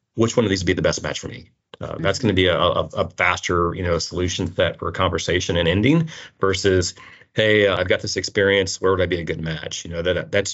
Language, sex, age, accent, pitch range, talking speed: English, male, 30-49, American, 85-100 Hz, 250 wpm